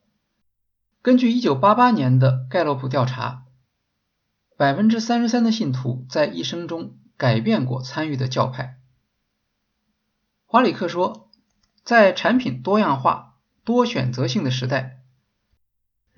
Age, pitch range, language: 50-69, 125-195 Hz, Chinese